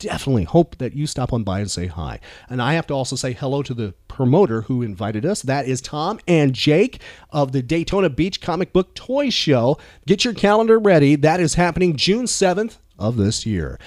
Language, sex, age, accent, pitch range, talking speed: English, male, 40-59, American, 120-175 Hz, 210 wpm